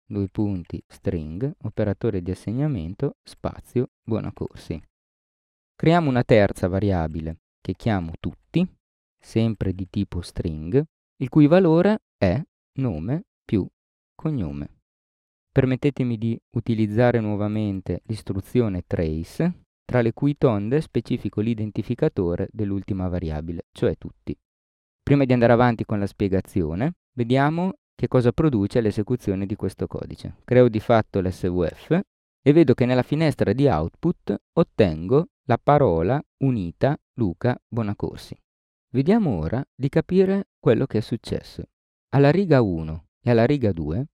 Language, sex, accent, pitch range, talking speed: Italian, male, native, 95-135 Hz, 120 wpm